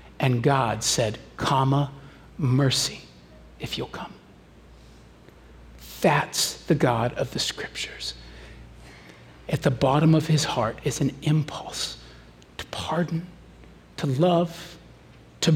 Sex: male